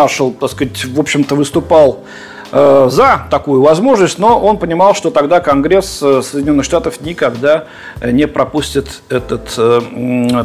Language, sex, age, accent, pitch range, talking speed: Russian, male, 40-59, native, 135-190 Hz, 115 wpm